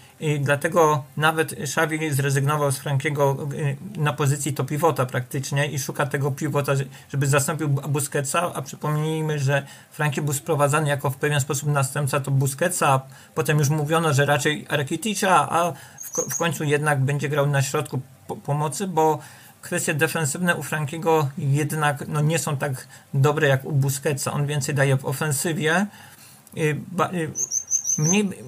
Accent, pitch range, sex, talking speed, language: native, 140-160 Hz, male, 145 wpm, Polish